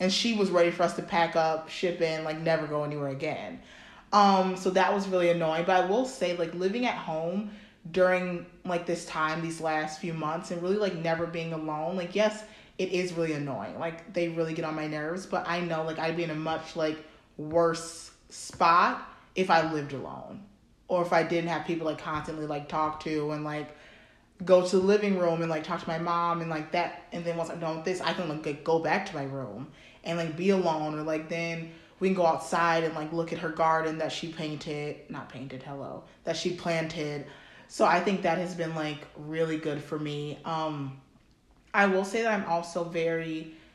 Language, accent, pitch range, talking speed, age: English, American, 155-180 Hz, 220 wpm, 20-39